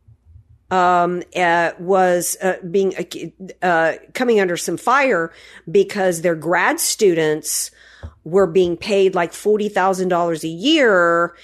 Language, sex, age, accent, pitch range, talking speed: English, female, 50-69, American, 165-215 Hz, 115 wpm